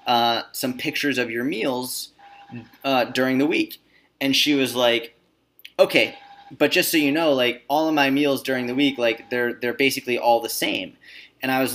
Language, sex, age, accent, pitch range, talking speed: English, male, 20-39, American, 120-145 Hz, 195 wpm